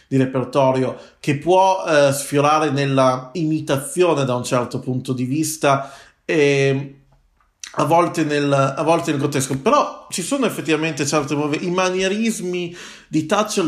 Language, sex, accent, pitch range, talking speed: Italian, male, native, 130-165 Hz, 130 wpm